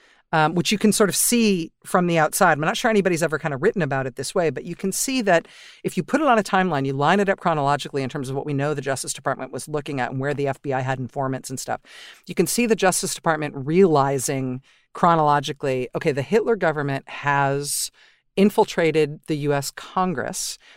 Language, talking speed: English, 220 wpm